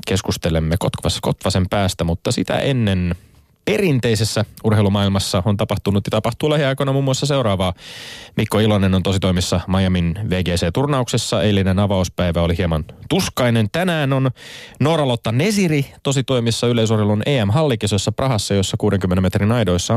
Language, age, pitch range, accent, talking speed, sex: Finnish, 30-49, 90-120 Hz, native, 115 wpm, male